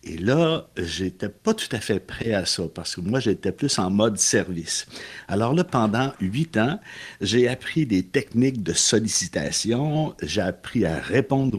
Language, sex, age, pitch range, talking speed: French, male, 60-79, 95-130 Hz, 175 wpm